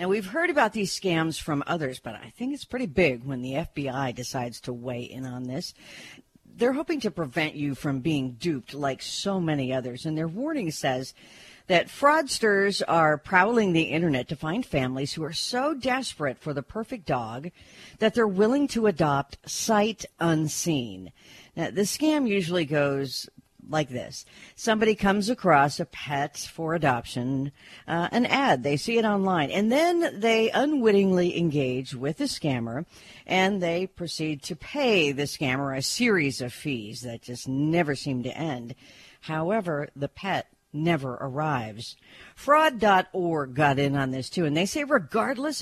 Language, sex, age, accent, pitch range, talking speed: English, female, 50-69, American, 135-200 Hz, 165 wpm